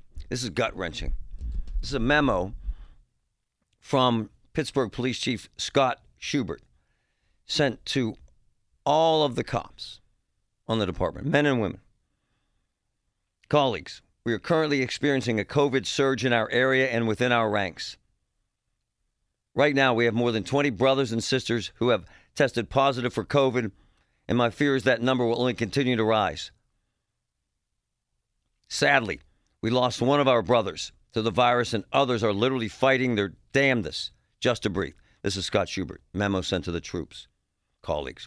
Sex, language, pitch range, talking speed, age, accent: male, English, 105-130 Hz, 150 wpm, 50-69, American